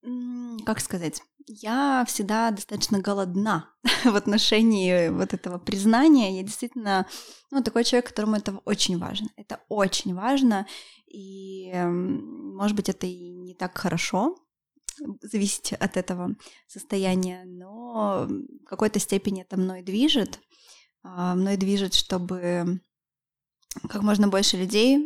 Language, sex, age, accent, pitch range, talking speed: Russian, female, 20-39, native, 185-230 Hz, 115 wpm